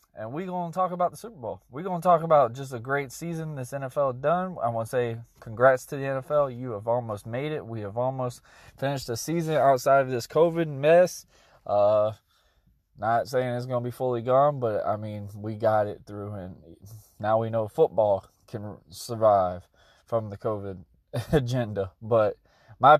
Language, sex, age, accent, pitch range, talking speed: English, male, 20-39, American, 110-165 Hz, 195 wpm